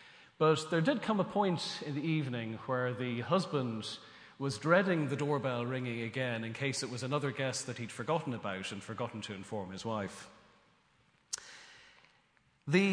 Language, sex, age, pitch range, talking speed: English, male, 40-59, 115-160 Hz, 165 wpm